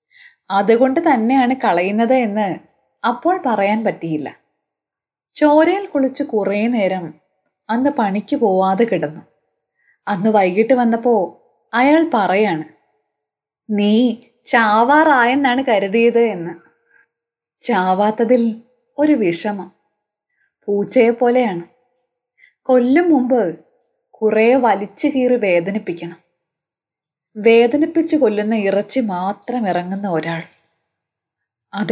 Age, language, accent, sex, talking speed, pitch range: 20-39, Malayalam, native, female, 75 wpm, 190-260 Hz